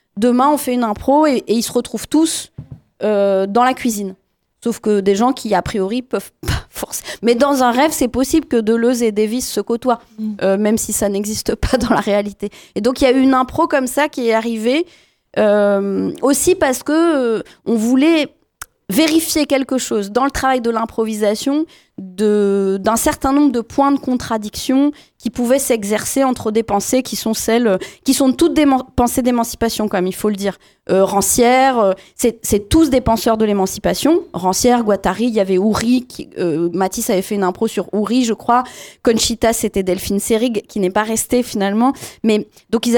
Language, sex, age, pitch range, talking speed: French, female, 20-39, 210-265 Hz, 195 wpm